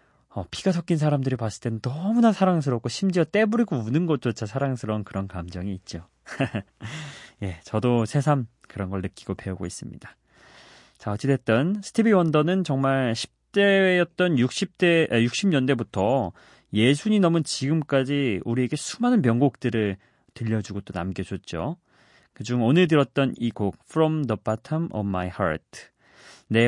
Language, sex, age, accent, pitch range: Korean, male, 30-49, native, 105-155 Hz